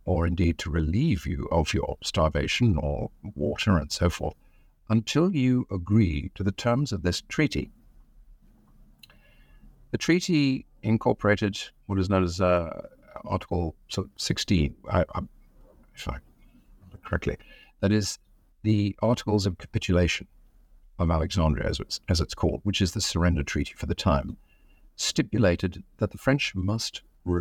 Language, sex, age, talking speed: English, male, 50-69, 130 wpm